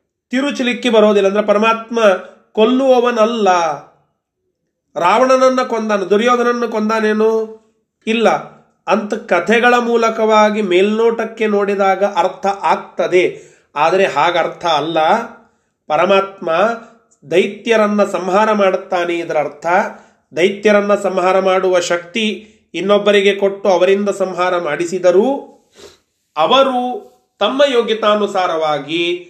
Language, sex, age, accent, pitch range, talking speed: Kannada, male, 30-49, native, 185-225 Hz, 80 wpm